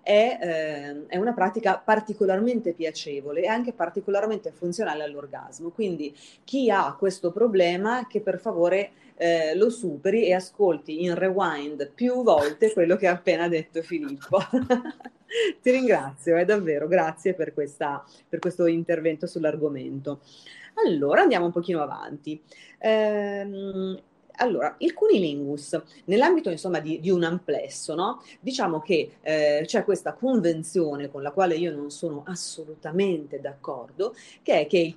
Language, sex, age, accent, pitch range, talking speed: Italian, female, 30-49, native, 155-205 Hz, 130 wpm